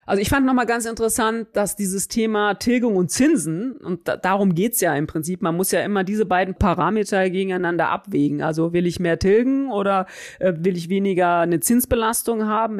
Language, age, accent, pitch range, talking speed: German, 40-59, German, 165-215 Hz, 195 wpm